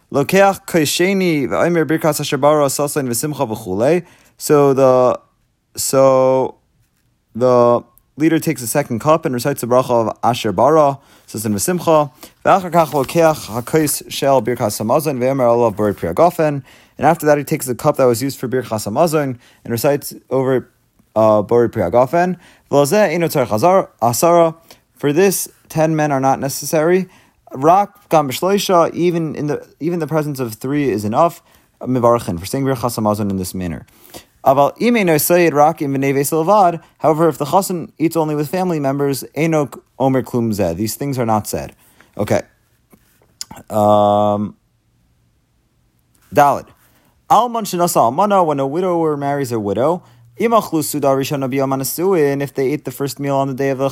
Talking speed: 115 wpm